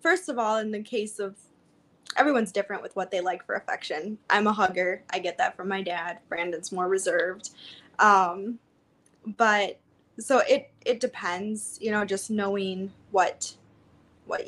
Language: English